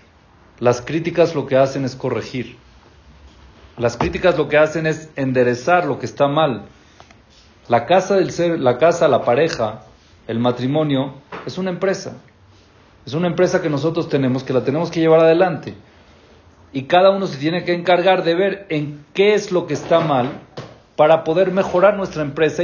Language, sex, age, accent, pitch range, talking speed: Spanish, male, 40-59, Mexican, 120-160 Hz, 170 wpm